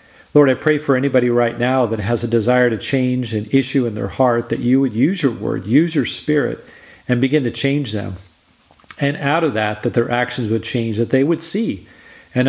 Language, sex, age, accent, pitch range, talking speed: English, male, 40-59, American, 115-140 Hz, 220 wpm